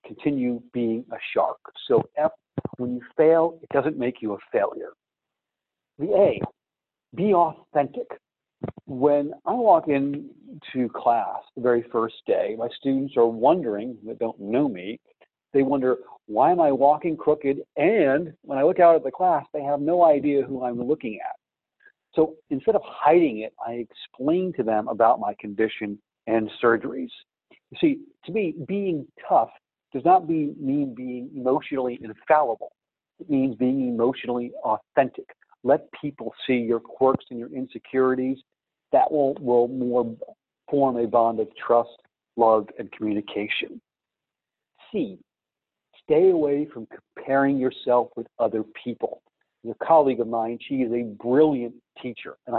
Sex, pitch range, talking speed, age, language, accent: male, 120-160 Hz, 150 wpm, 50-69, English, American